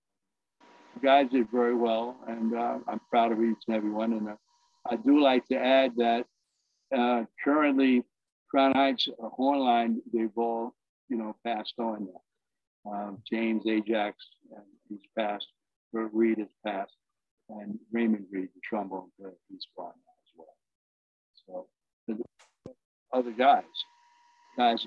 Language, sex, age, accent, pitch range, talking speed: English, male, 60-79, American, 110-135 Hz, 140 wpm